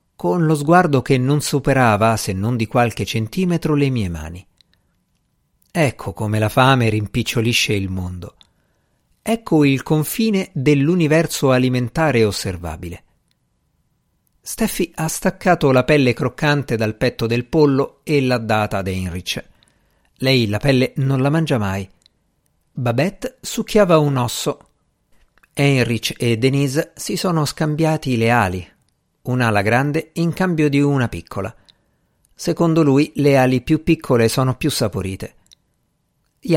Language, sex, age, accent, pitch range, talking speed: Italian, male, 50-69, native, 110-155 Hz, 130 wpm